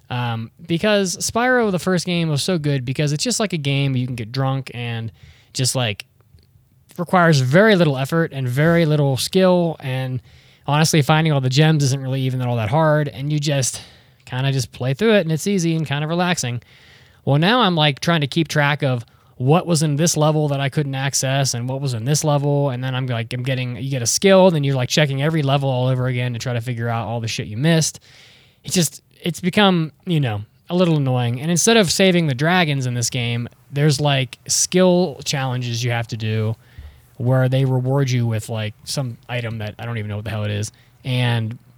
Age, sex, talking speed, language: 20-39, male, 225 wpm, English